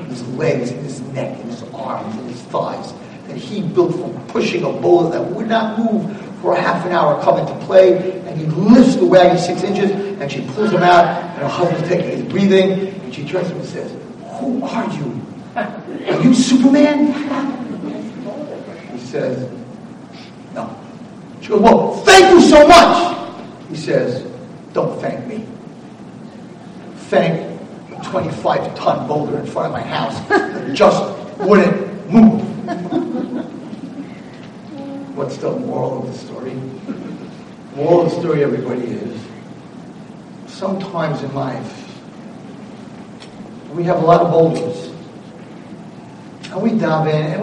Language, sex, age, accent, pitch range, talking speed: English, male, 50-69, American, 170-225 Hz, 145 wpm